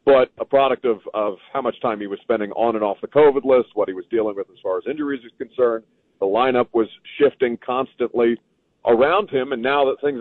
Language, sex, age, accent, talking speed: English, male, 40-59, American, 230 wpm